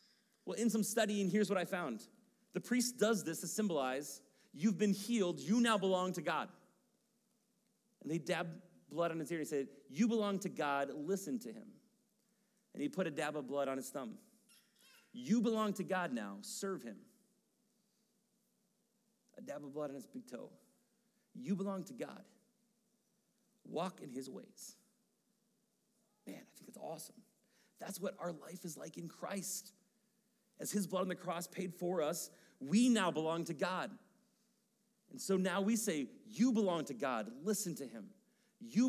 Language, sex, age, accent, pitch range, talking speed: English, male, 40-59, American, 175-225 Hz, 175 wpm